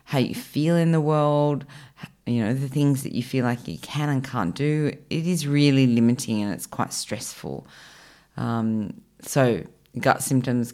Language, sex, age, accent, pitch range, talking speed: English, female, 30-49, Australian, 120-145 Hz, 175 wpm